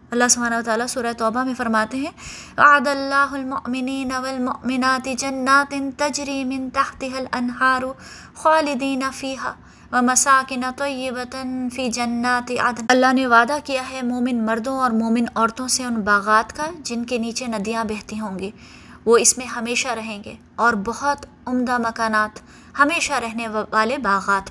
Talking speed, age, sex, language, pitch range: 130 wpm, 20-39, female, Urdu, 230-270 Hz